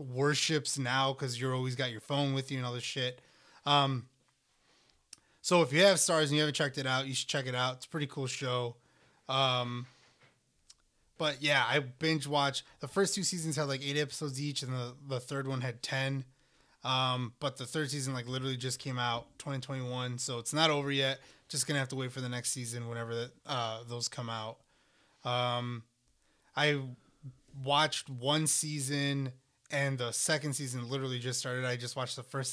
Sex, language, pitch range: male, English, 125-145 Hz